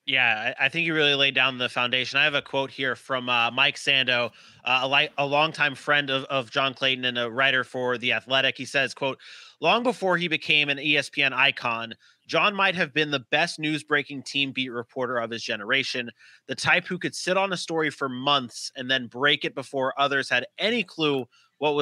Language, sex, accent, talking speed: English, male, American, 210 wpm